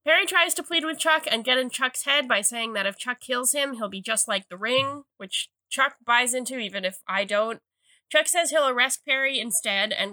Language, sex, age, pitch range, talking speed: English, female, 10-29, 215-285 Hz, 230 wpm